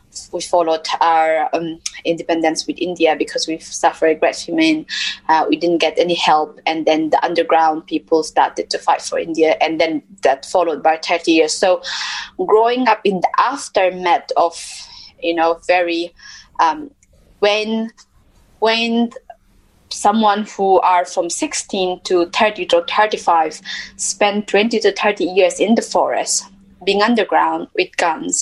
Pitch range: 170-215 Hz